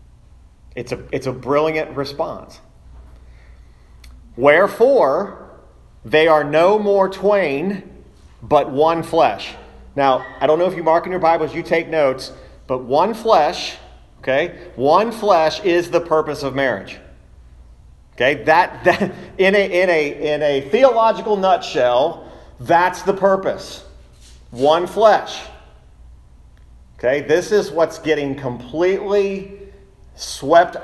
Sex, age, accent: male, 40-59, American